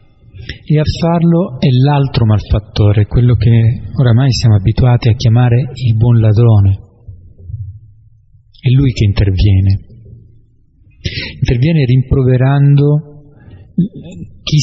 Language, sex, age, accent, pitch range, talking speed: Italian, male, 40-59, native, 110-140 Hz, 95 wpm